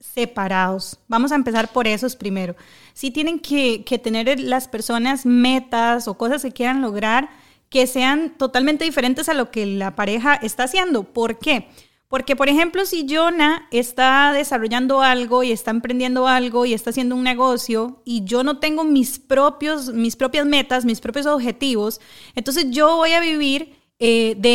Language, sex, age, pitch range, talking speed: Spanish, female, 30-49, 240-290 Hz, 170 wpm